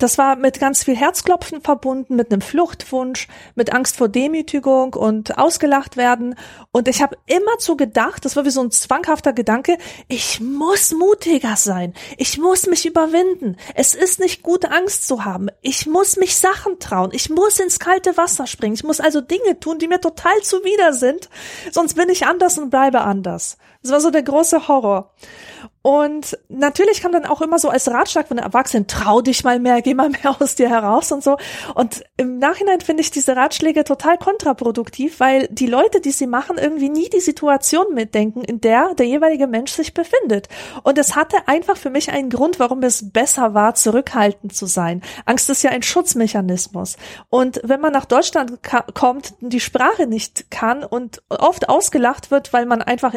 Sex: female